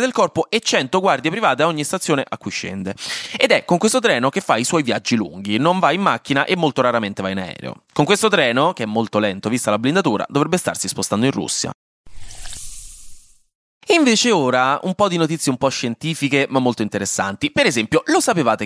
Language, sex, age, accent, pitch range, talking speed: Italian, male, 20-39, native, 115-155 Hz, 205 wpm